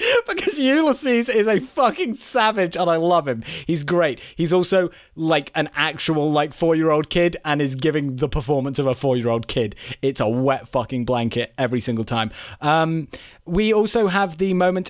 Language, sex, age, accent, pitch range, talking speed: English, male, 30-49, British, 135-225 Hz, 175 wpm